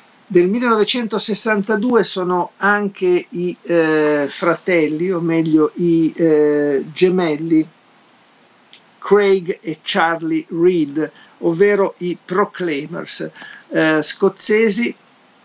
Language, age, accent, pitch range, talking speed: Italian, 50-69, native, 150-180 Hz, 80 wpm